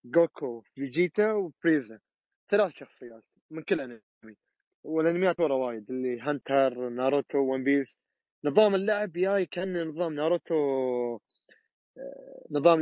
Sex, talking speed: male, 110 wpm